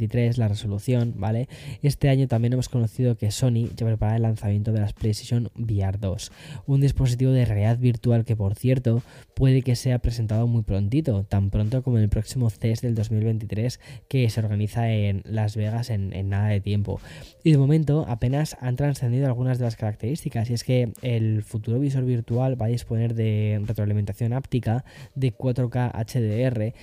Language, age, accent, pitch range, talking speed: Spanish, 10-29, Spanish, 105-125 Hz, 175 wpm